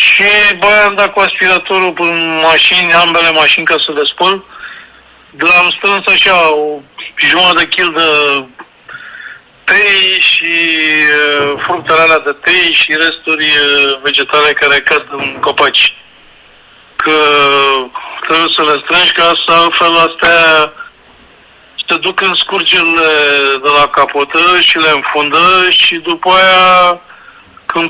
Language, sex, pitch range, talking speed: Romanian, male, 150-175 Hz, 135 wpm